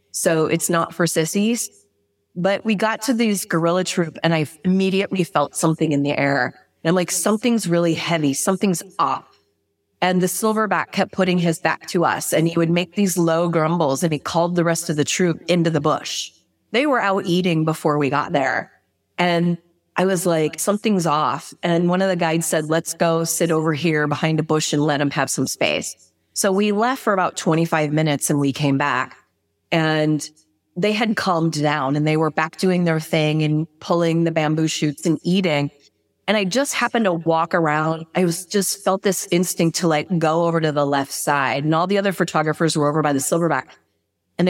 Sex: female